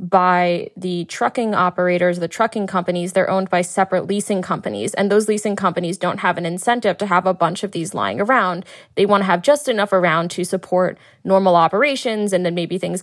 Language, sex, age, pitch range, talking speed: English, female, 20-39, 175-200 Hz, 205 wpm